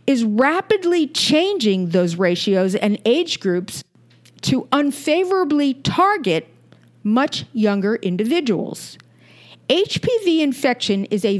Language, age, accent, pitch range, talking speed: English, 50-69, American, 195-290 Hz, 95 wpm